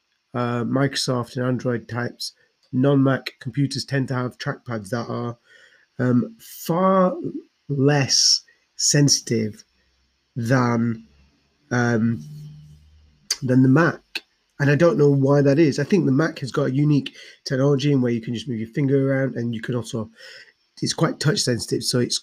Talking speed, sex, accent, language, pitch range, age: 155 wpm, male, British, English, 120-145 Hz, 30-49